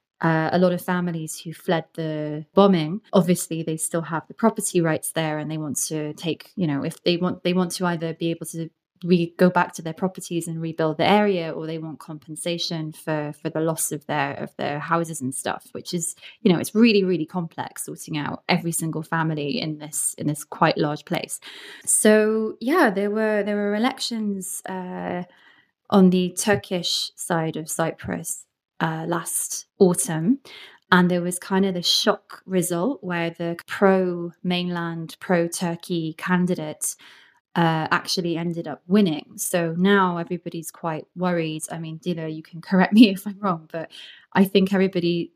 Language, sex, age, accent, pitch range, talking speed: English, female, 20-39, British, 160-190 Hz, 180 wpm